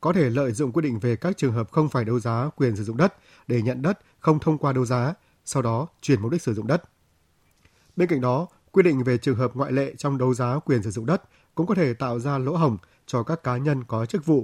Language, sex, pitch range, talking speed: Vietnamese, male, 115-150 Hz, 270 wpm